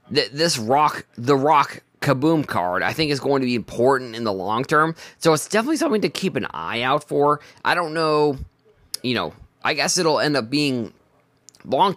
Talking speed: 195 wpm